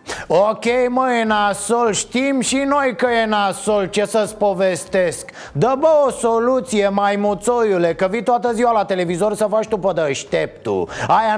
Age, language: 30-49, Romanian